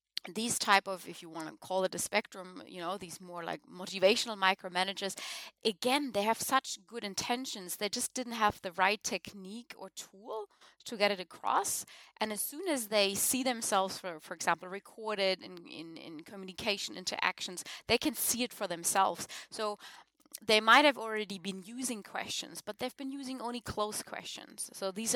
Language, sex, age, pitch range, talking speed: English, female, 20-39, 190-240 Hz, 180 wpm